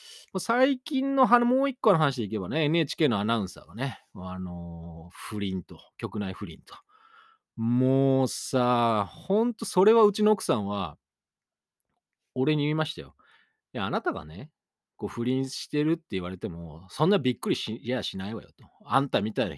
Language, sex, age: Japanese, male, 40-59